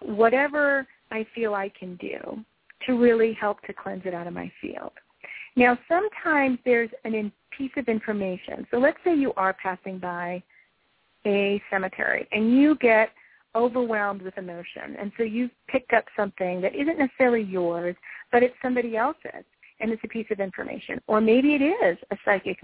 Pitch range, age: 195-260 Hz, 40-59